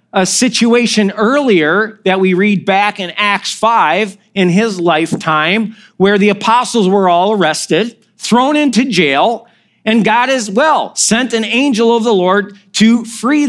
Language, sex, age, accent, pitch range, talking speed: English, male, 40-59, American, 200-250 Hz, 150 wpm